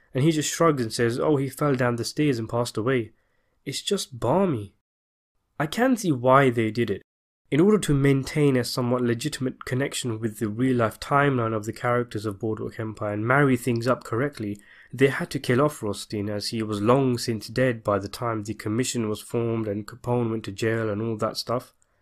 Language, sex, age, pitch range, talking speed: English, male, 20-39, 110-140 Hz, 210 wpm